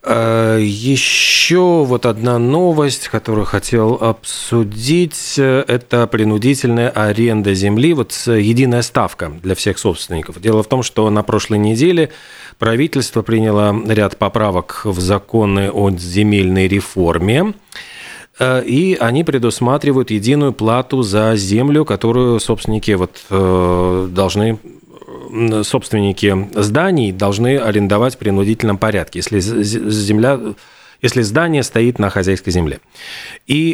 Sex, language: male, Russian